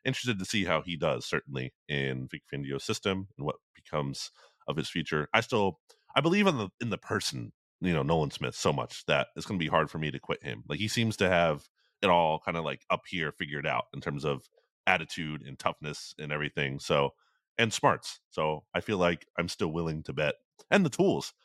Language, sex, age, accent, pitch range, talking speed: English, male, 30-49, American, 80-115 Hz, 225 wpm